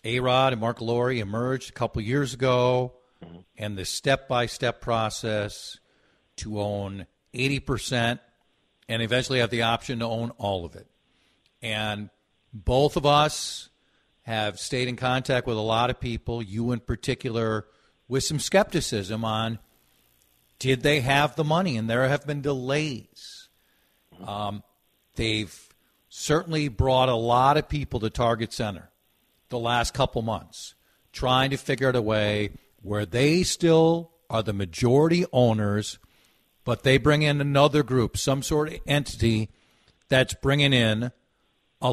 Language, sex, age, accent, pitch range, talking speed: English, male, 50-69, American, 110-140 Hz, 140 wpm